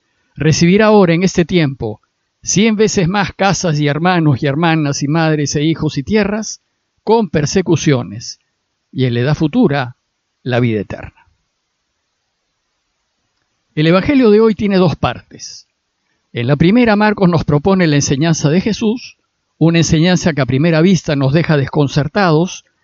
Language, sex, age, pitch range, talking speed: Spanish, male, 50-69, 145-195 Hz, 145 wpm